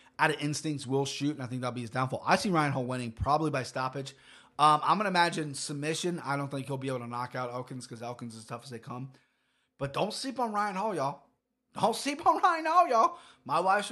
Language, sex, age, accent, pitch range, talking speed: English, male, 30-49, American, 120-160 Hz, 255 wpm